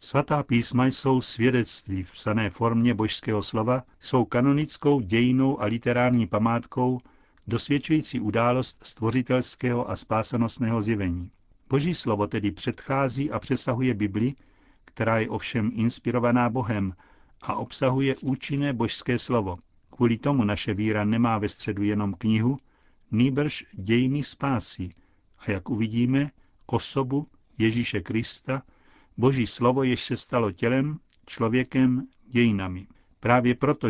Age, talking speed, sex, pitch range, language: 60-79, 115 wpm, male, 105-130 Hz, Czech